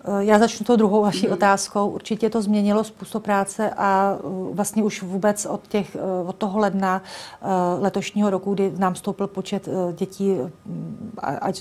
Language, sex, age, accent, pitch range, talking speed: Czech, female, 40-59, native, 185-200 Hz, 145 wpm